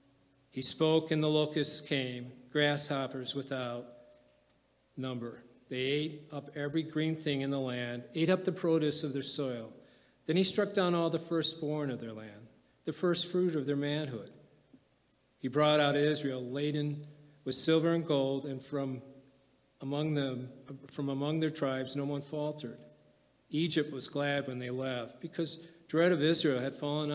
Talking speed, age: 160 wpm, 40-59